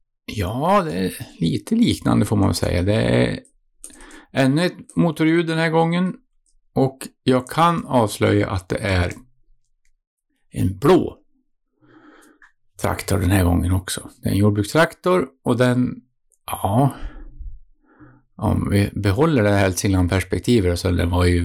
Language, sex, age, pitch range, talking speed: Swedish, male, 50-69, 100-155 Hz, 140 wpm